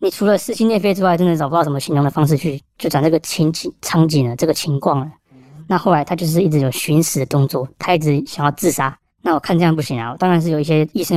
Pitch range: 135-175 Hz